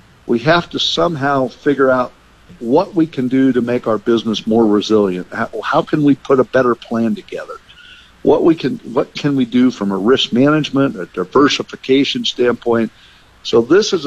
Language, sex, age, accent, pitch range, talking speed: English, male, 50-69, American, 110-140 Hz, 180 wpm